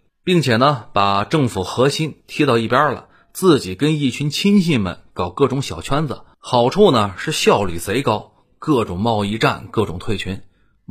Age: 30-49